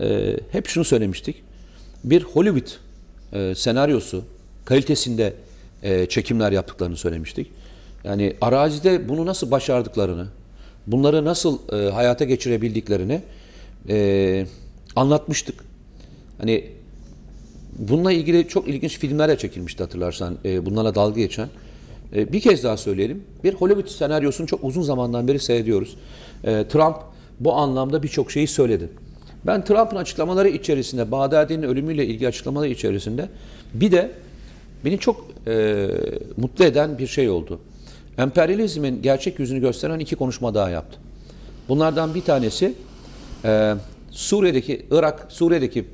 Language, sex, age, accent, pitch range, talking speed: Turkish, male, 40-59, native, 110-160 Hz, 110 wpm